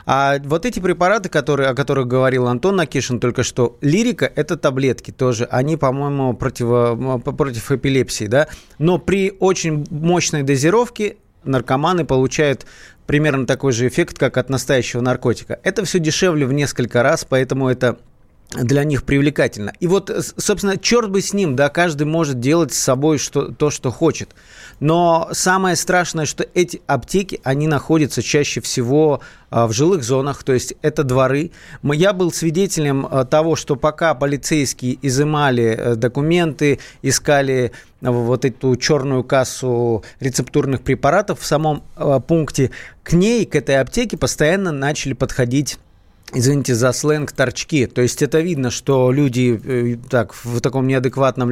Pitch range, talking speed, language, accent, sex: 125-160 Hz, 140 wpm, Russian, native, male